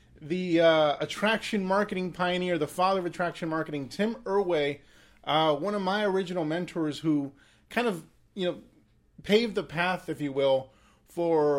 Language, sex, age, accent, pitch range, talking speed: English, male, 30-49, American, 150-185 Hz, 155 wpm